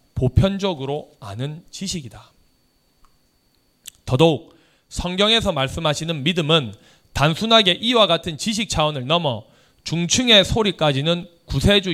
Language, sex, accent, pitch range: Korean, male, native, 130-170 Hz